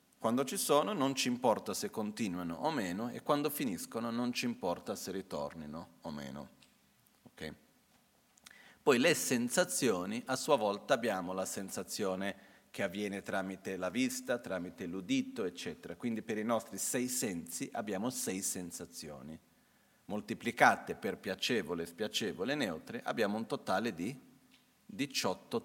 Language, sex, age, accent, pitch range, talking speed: Italian, male, 40-59, native, 95-125 Hz, 135 wpm